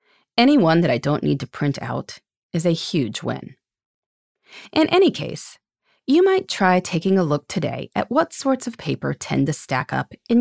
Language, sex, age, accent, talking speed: English, female, 30-49, American, 190 wpm